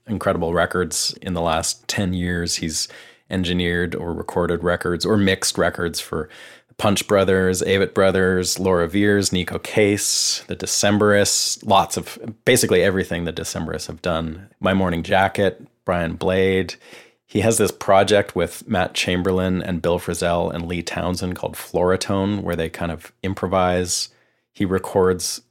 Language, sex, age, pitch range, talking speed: English, male, 30-49, 85-95 Hz, 145 wpm